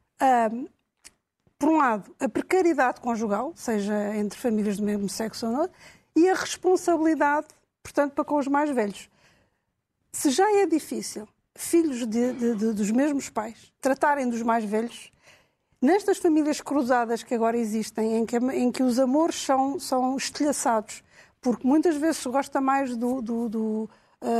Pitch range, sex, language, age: 235-285 Hz, female, Portuguese, 50-69